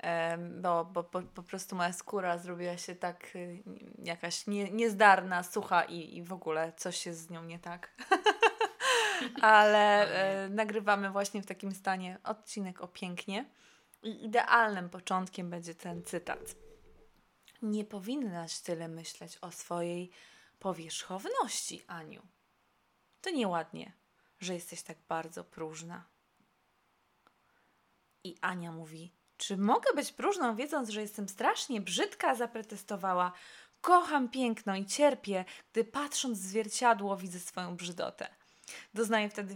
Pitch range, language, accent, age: 175-225 Hz, Polish, native, 20-39